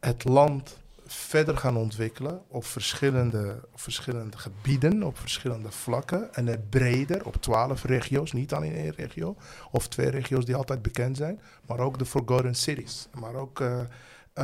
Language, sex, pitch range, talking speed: Dutch, male, 120-140 Hz, 160 wpm